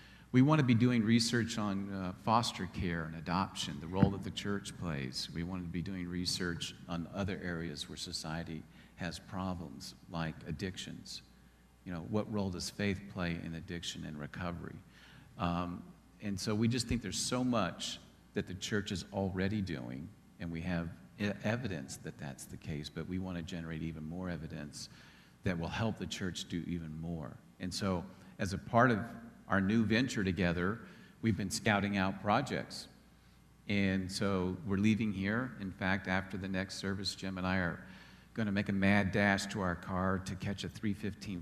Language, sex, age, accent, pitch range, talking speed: English, male, 50-69, American, 85-100 Hz, 180 wpm